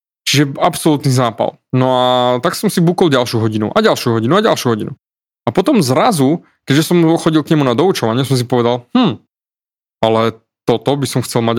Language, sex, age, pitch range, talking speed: Slovak, male, 20-39, 120-150 Hz, 190 wpm